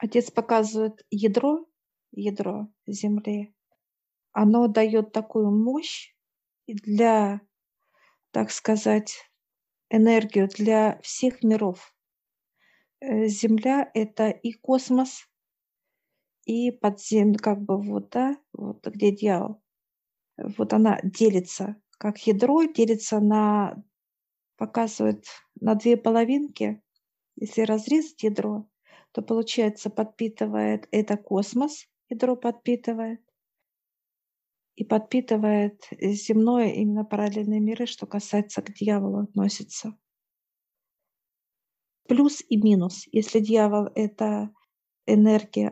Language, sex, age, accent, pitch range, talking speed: Russian, female, 40-59, native, 210-230 Hz, 90 wpm